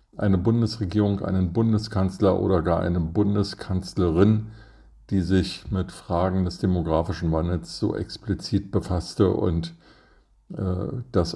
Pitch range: 90-110 Hz